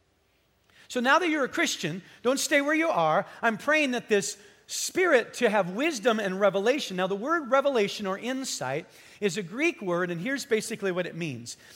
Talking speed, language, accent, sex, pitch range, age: 190 wpm, English, American, male, 175-240 Hz, 50-69